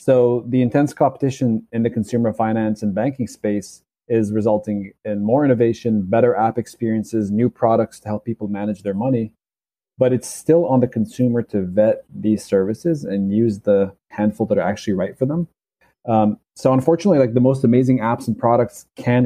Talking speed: 180 wpm